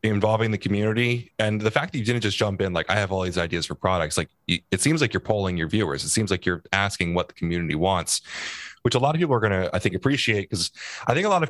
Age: 30-49